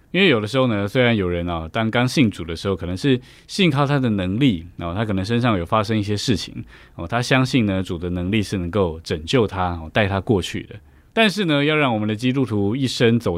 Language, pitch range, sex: Chinese, 95-125 Hz, male